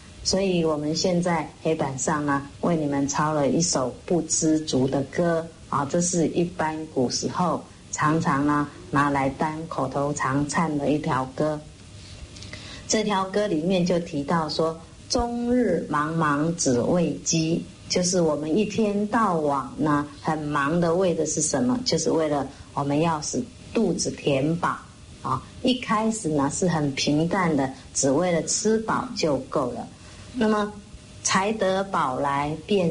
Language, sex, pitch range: English, female, 140-185 Hz